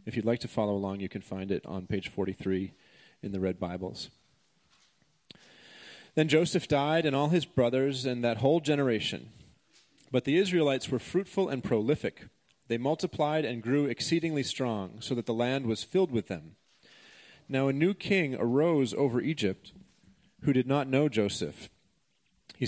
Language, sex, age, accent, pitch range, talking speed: English, male, 30-49, American, 115-150 Hz, 165 wpm